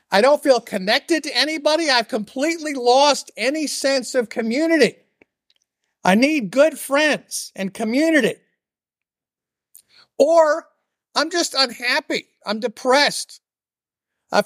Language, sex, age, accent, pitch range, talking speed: English, male, 50-69, American, 205-270 Hz, 110 wpm